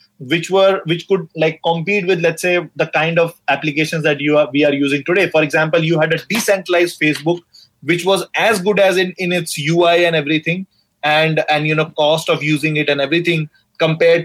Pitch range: 150-180 Hz